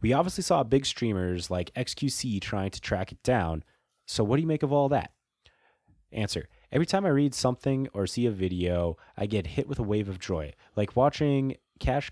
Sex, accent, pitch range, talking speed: male, American, 90-135 Hz, 205 wpm